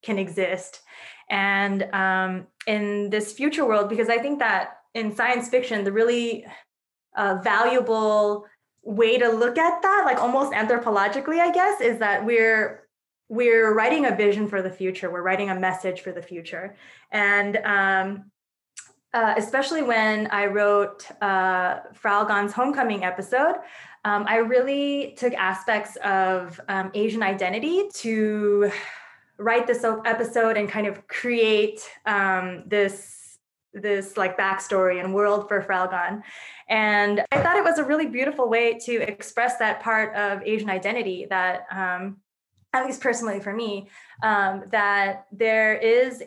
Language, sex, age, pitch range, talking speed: English, female, 20-39, 195-230 Hz, 145 wpm